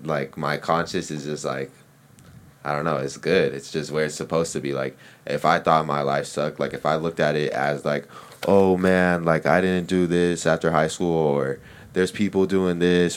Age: 20-39